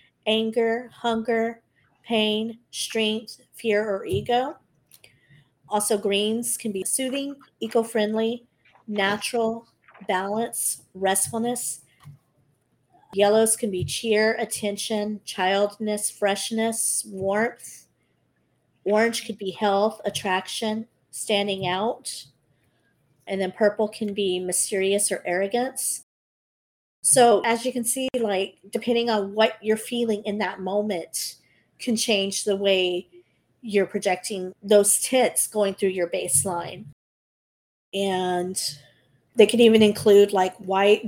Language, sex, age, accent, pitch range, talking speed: English, female, 40-59, American, 185-225 Hz, 105 wpm